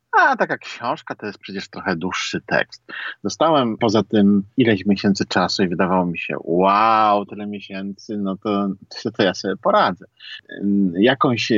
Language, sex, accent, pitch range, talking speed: Polish, male, native, 95-110 Hz, 155 wpm